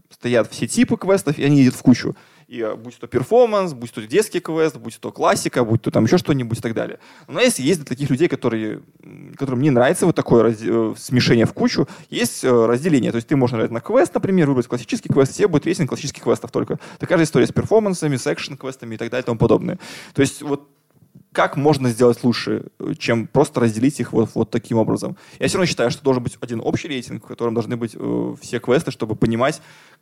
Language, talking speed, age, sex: Russian, 220 wpm, 20-39, male